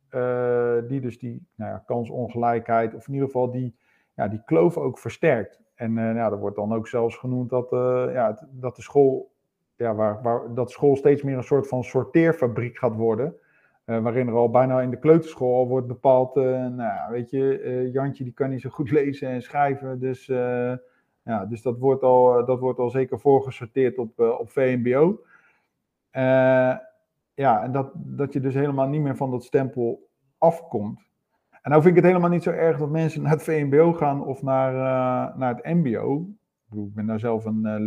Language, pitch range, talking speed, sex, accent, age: Dutch, 120-140 Hz, 205 wpm, male, Dutch, 50-69